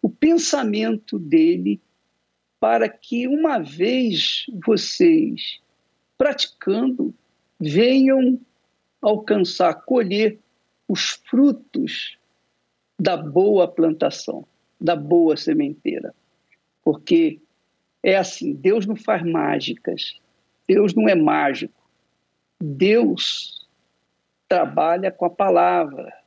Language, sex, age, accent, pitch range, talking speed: Portuguese, male, 60-79, Brazilian, 190-285 Hz, 80 wpm